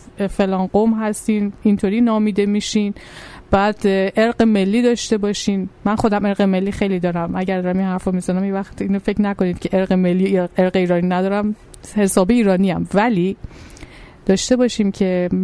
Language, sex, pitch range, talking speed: Persian, female, 180-215 Hz, 150 wpm